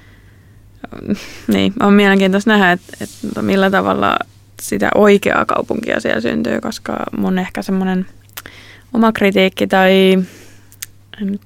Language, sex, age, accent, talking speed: Finnish, female, 20-39, native, 110 wpm